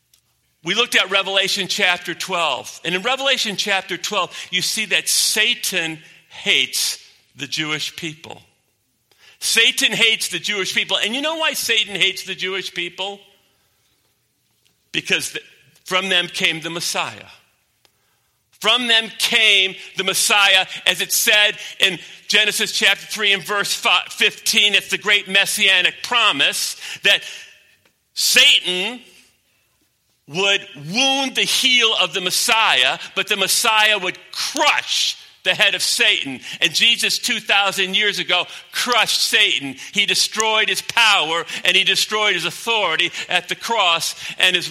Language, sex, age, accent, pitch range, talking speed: English, male, 50-69, American, 175-210 Hz, 130 wpm